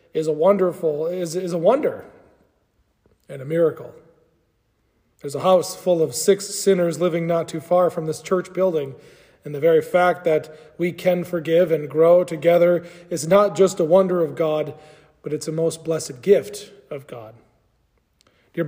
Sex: male